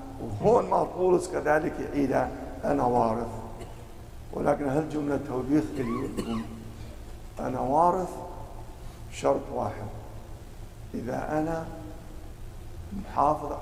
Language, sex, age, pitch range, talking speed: English, male, 50-69, 110-150 Hz, 85 wpm